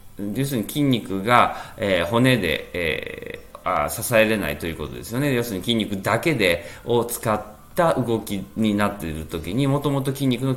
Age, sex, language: 20-39, male, Japanese